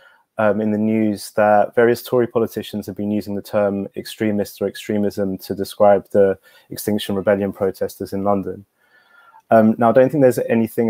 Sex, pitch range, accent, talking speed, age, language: male, 100-115 Hz, British, 170 wpm, 20-39, English